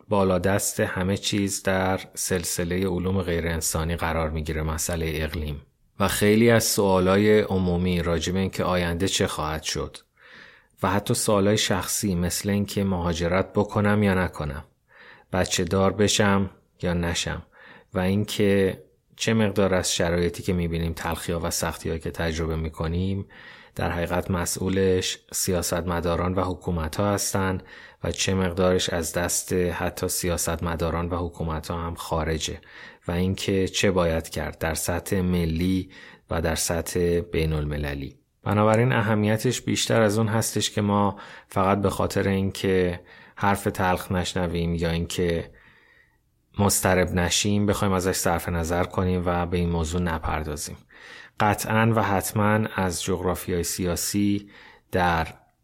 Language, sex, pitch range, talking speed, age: Persian, male, 85-100 Hz, 130 wpm, 30-49